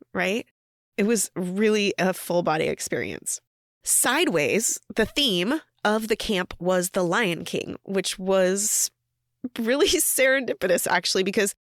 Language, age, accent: English, 20-39, American